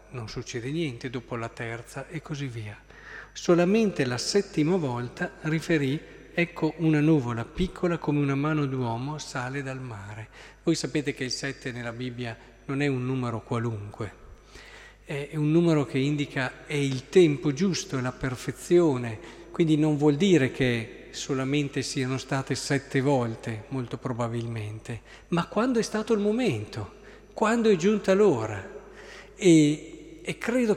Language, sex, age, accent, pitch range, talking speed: Italian, male, 40-59, native, 125-160 Hz, 145 wpm